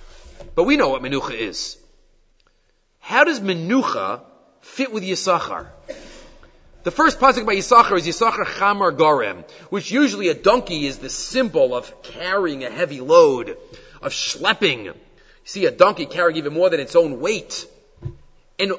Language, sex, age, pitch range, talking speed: English, male, 30-49, 160-245 Hz, 150 wpm